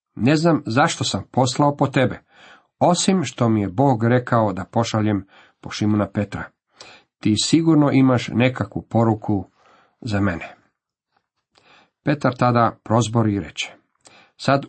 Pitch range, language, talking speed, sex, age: 105-140 Hz, Croatian, 125 wpm, male, 50-69